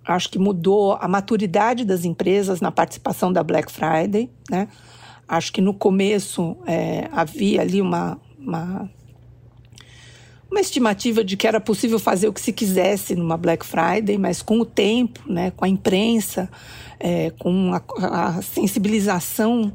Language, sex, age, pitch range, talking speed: Portuguese, female, 50-69, 185-235 Hz, 150 wpm